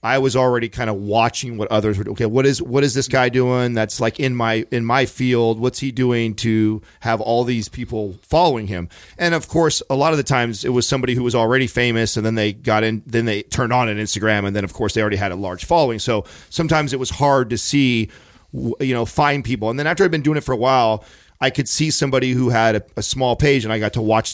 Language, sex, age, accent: English, male, 40-59, American